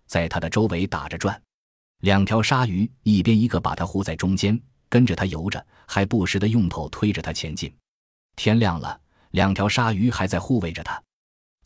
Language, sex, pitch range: Chinese, male, 85-115 Hz